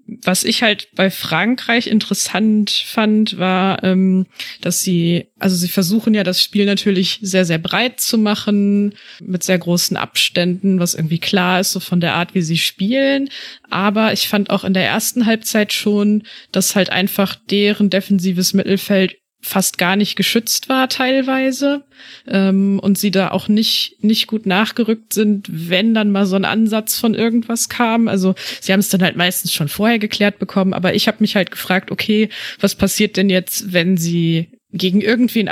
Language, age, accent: German, 20-39, German